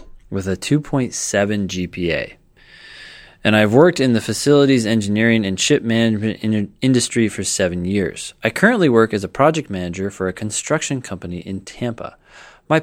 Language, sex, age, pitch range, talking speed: English, male, 20-39, 95-115 Hz, 155 wpm